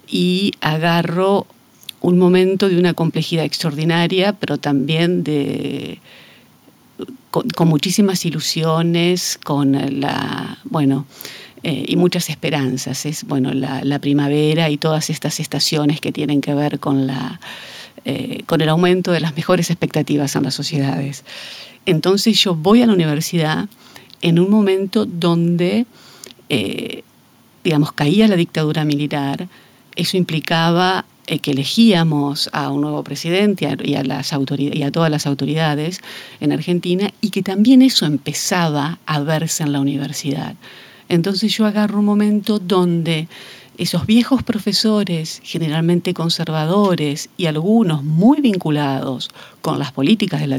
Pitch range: 145-185 Hz